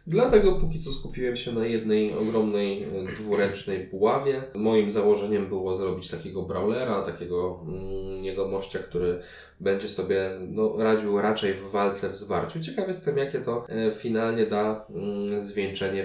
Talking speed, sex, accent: 140 wpm, male, native